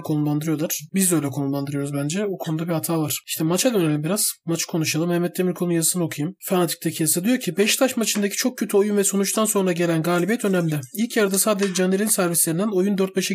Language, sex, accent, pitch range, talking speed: Turkish, male, native, 175-215 Hz, 195 wpm